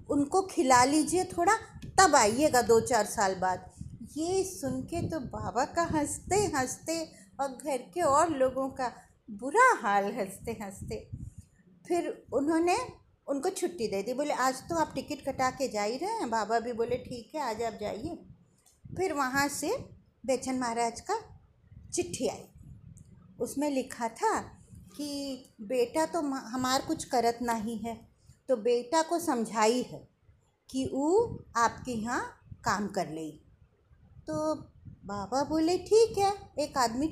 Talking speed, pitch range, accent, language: 145 wpm, 230-320 Hz, native, Hindi